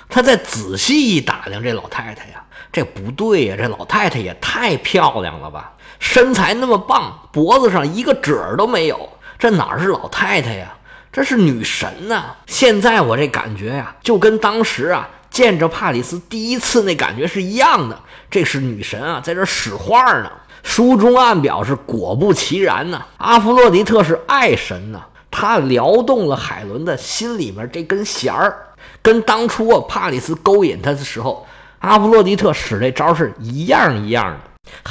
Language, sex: Chinese, male